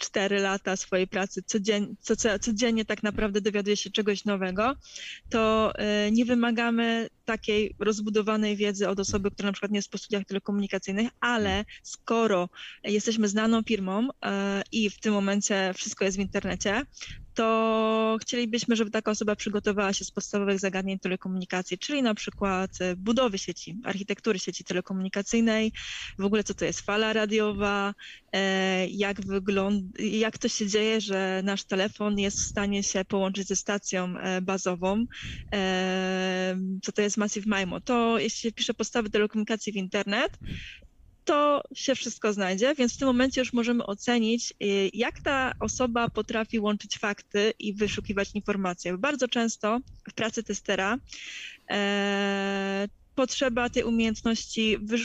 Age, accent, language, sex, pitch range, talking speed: 20-39, native, Polish, female, 195-225 Hz, 135 wpm